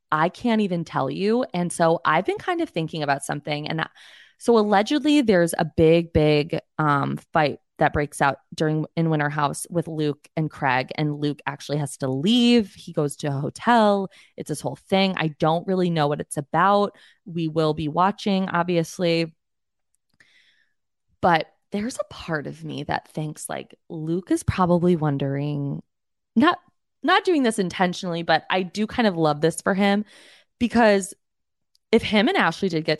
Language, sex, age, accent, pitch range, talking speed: English, female, 20-39, American, 150-195 Hz, 175 wpm